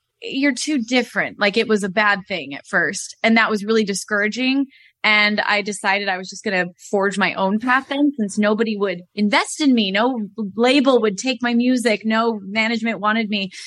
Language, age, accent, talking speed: English, 20-39, American, 200 wpm